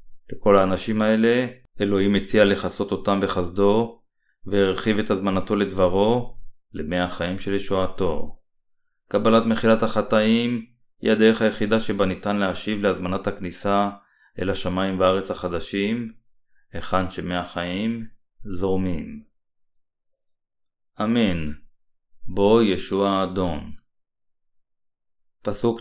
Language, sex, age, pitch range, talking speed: Hebrew, male, 30-49, 95-110 Hz, 95 wpm